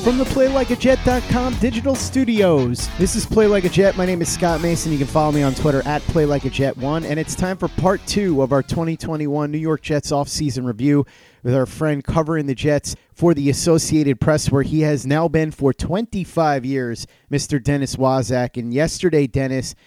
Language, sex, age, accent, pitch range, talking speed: English, male, 30-49, American, 130-165 Hz, 185 wpm